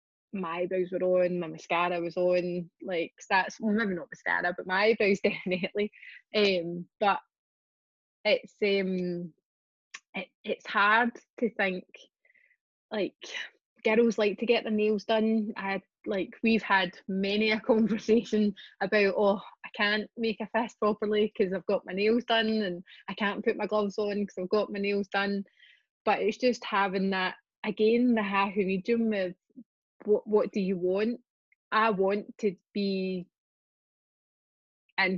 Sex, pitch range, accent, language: female, 190-220 Hz, British, English